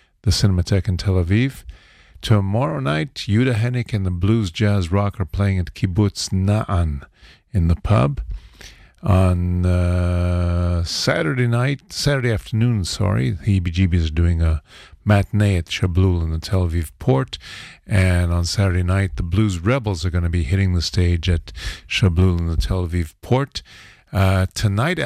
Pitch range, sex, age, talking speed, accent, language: 85-105 Hz, male, 50-69, 155 wpm, American, English